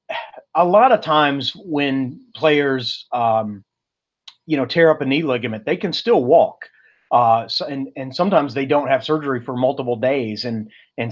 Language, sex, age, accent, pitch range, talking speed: English, male, 30-49, American, 120-150 Hz, 175 wpm